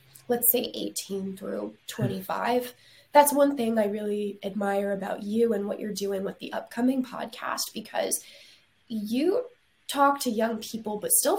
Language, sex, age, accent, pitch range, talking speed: English, female, 20-39, American, 205-260 Hz, 155 wpm